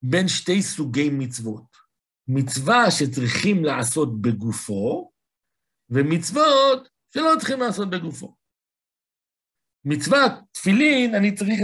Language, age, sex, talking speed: Hebrew, 60-79, male, 90 wpm